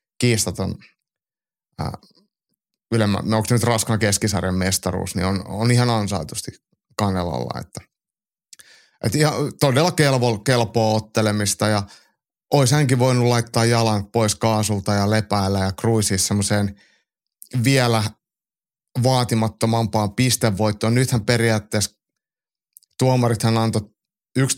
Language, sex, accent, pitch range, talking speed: Finnish, male, native, 100-120 Hz, 105 wpm